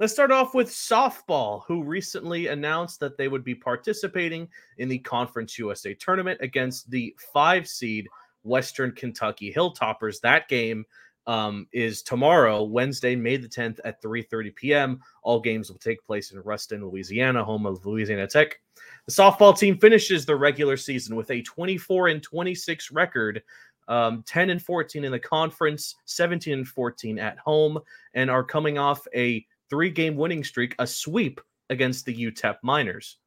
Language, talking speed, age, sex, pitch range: English, 150 wpm, 30-49, male, 115-155 Hz